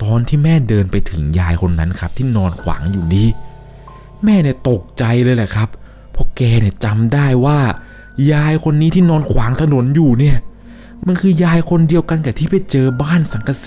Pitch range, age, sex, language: 100-140 Hz, 20-39, male, Thai